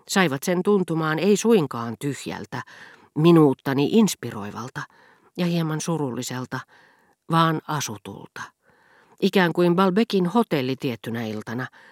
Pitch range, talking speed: 125-170 Hz, 95 wpm